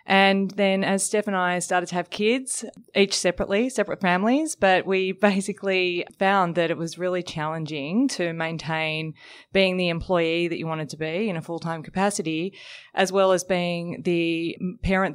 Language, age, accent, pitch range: English, 20-39, Australian, 165-195 Hz